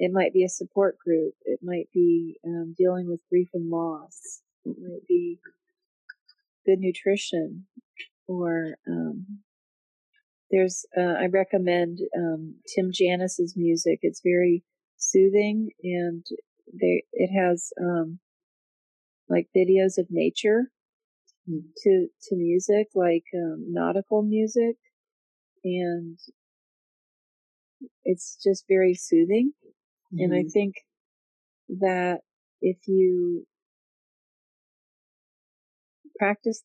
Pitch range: 175-210 Hz